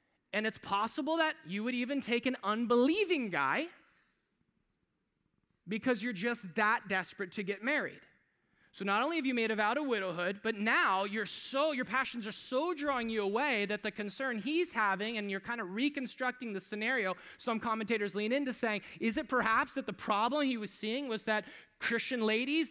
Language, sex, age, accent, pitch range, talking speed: English, male, 20-39, American, 210-270 Hz, 180 wpm